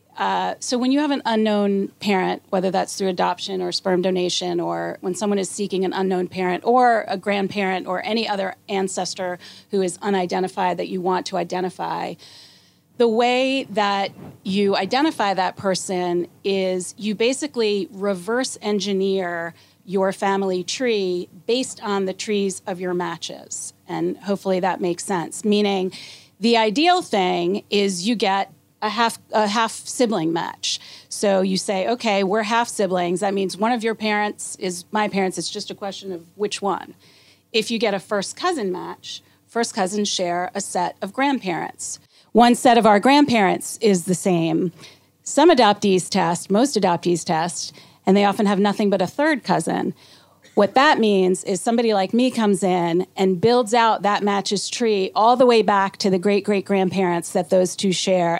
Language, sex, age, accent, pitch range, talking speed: English, female, 30-49, American, 185-215 Hz, 170 wpm